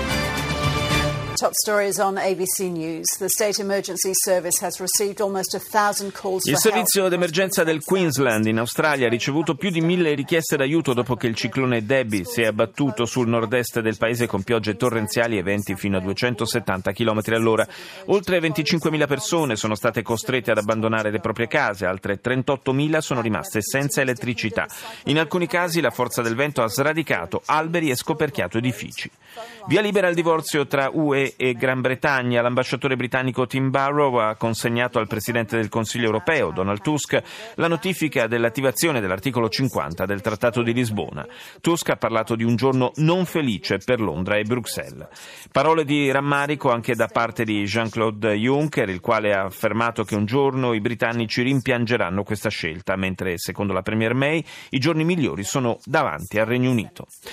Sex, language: male, Italian